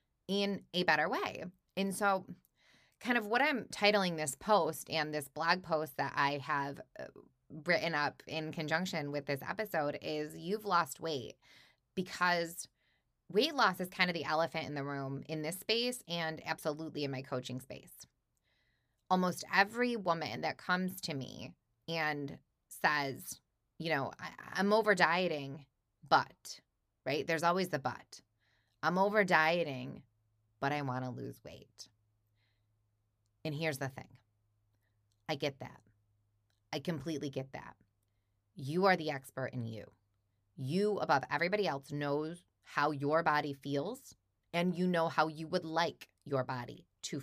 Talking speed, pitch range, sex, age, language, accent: 145 wpm, 130-180 Hz, female, 20-39, English, American